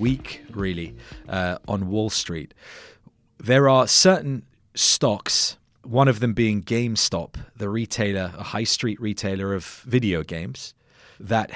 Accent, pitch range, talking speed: British, 95-125 Hz, 130 wpm